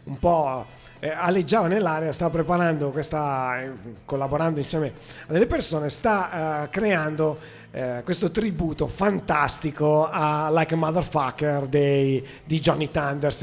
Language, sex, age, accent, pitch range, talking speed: Italian, male, 30-49, native, 135-165 Hz, 125 wpm